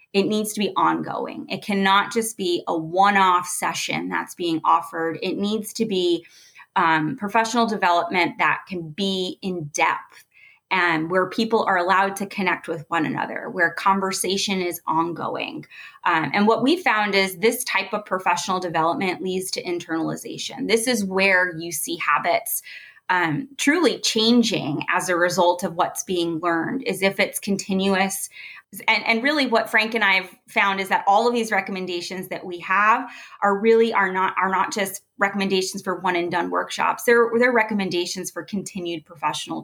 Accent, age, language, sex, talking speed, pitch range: American, 20-39, English, female, 170 wpm, 180-225 Hz